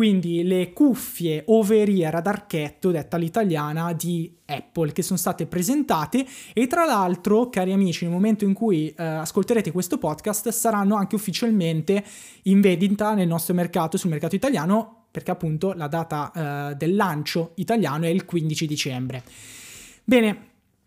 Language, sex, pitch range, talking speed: Italian, male, 165-210 Hz, 145 wpm